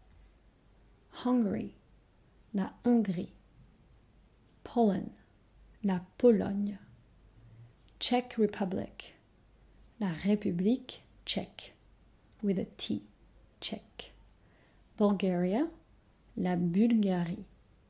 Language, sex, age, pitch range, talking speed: French, female, 30-49, 180-225 Hz, 60 wpm